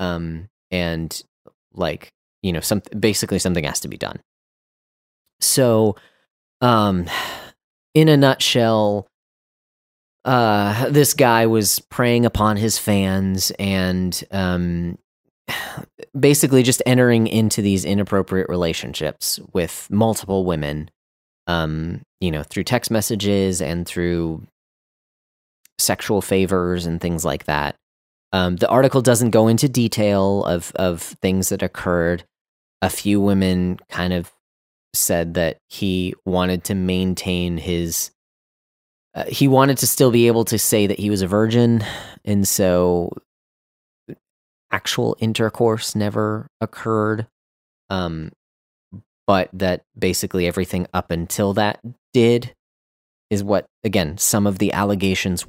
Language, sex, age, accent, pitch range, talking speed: English, male, 30-49, American, 85-110 Hz, 120 wpm